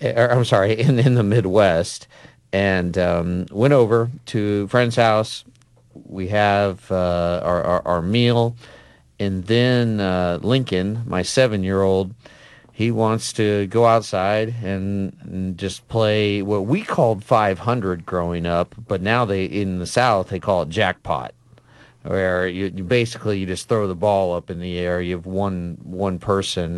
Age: 40-59